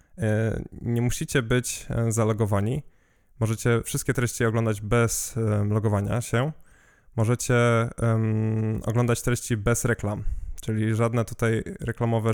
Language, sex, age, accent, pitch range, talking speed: Polish, male, 10-29, native, 110-130 Hz, 95 wpm